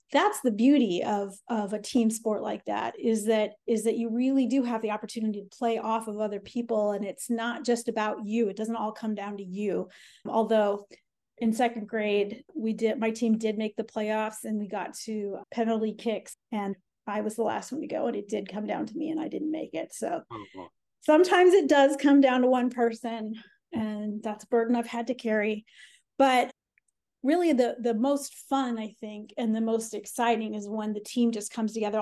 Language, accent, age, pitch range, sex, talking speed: English, American, 30-49, 215-245 Hz, female, 210 wpm